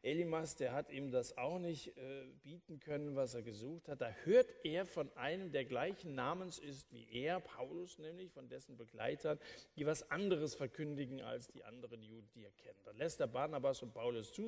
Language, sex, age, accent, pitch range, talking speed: German, male, 50-69, German, 125-165 Hz, 200 wpm